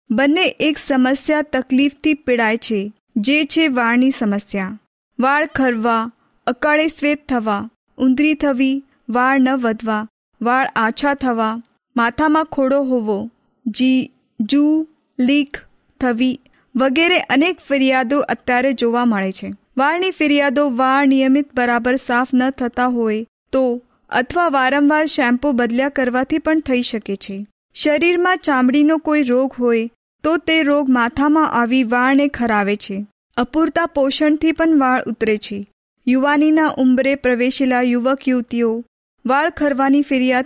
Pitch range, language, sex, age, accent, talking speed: 240-285 Hz, Hindi, female, 20-39, native, 80 wpm